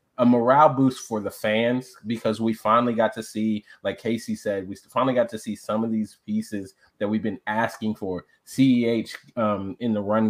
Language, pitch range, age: English, 110-125 Hz, 20-39